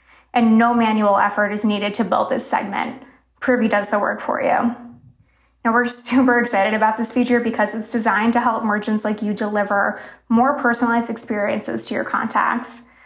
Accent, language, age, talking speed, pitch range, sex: American, English, 20-39, 175 wpm, 215-245 Hz, female